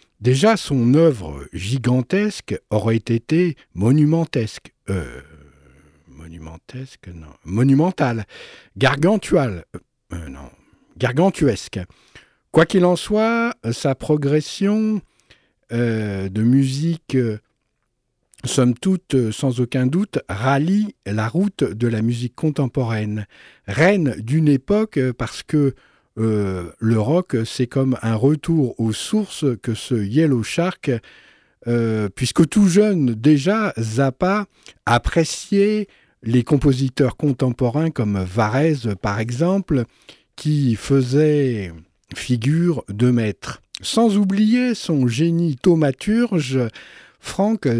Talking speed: 95 wpm